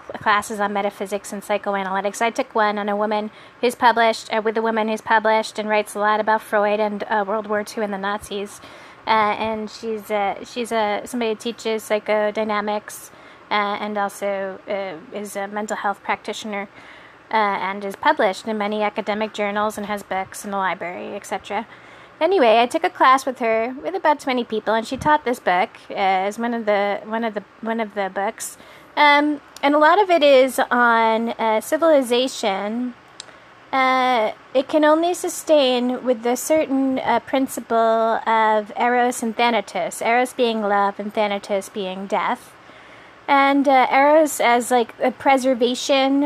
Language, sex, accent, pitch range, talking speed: English, female, American, 210-250 Hz, 175 wpm